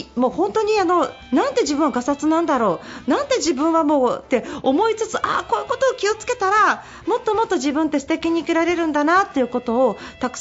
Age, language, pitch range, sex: 40-59, Japanese, 230-345 Hz, female